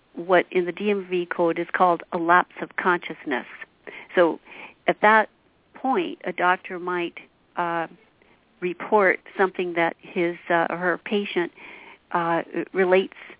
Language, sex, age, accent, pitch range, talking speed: English, female, 60-79, American, 175-200 Hz, 130 wpm